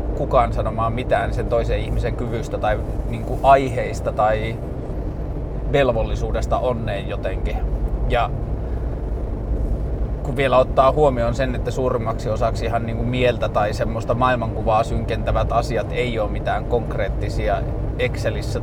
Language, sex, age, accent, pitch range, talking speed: Finnish, male, 20-39, native, 110-125 Hz, 115 wpm